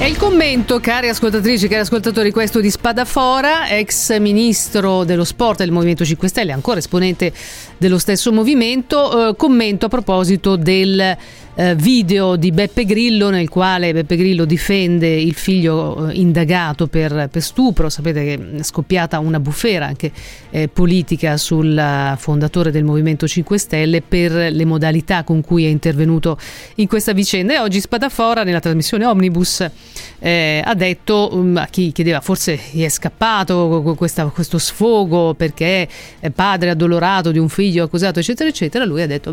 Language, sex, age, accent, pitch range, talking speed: Italian, female, 40-59, native, 165-205 Hz, 155 wpm